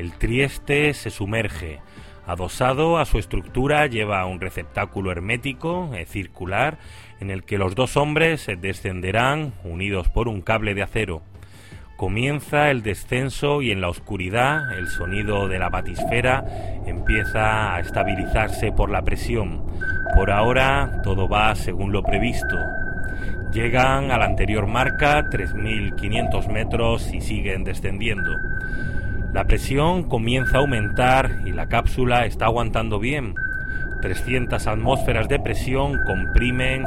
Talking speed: 125 wpm